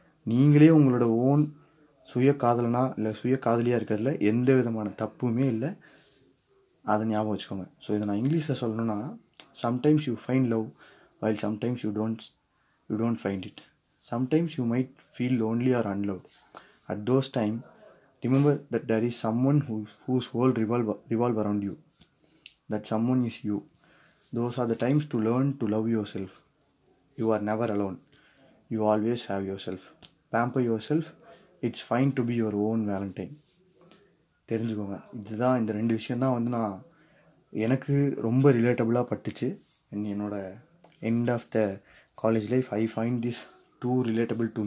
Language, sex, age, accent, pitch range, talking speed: Tamil, male, 20-39, native, 105-130 Hz, 150 wpm